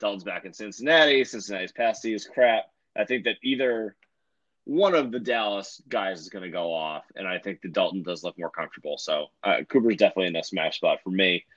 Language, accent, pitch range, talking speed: English, American, 100-125 Hz, 215 wpm